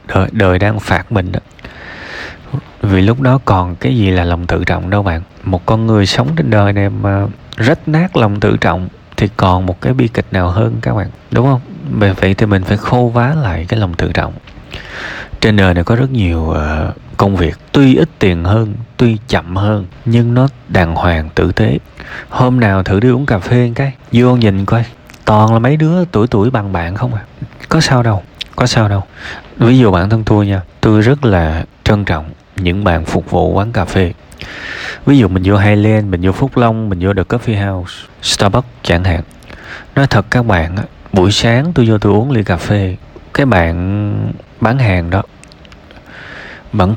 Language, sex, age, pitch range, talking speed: Vietnamese, male, 20-39, 90-115 Hz, 200 wpm